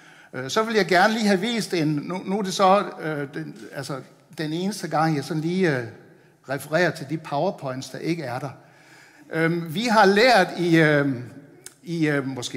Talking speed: 190 wpm